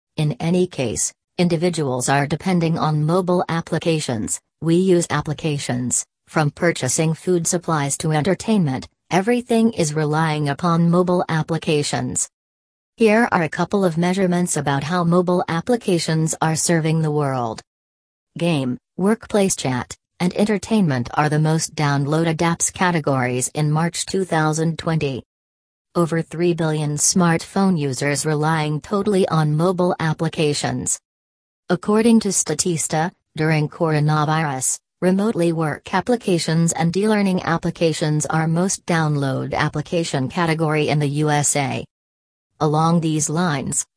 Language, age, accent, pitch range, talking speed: English, 40-59, American, 145-175 Hz, 115 wpm